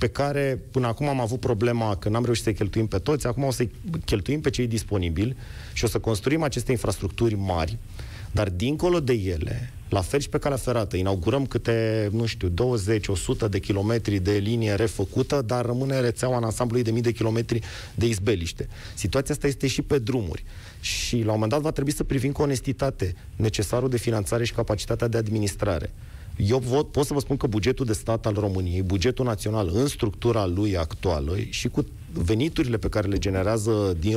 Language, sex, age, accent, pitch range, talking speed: Romanian, male, 30-49, native, 100-120 Hz, 190 wpm